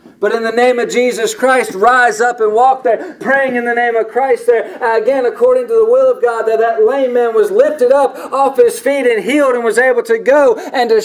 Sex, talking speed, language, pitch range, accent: male, 245 wpm, English, 190-275 Hz, American